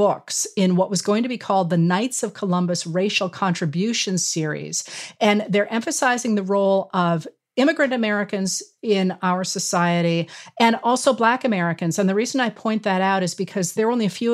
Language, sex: English, female